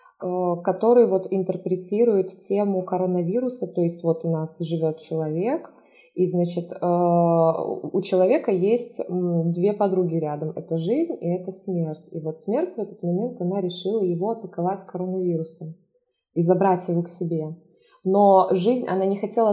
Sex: female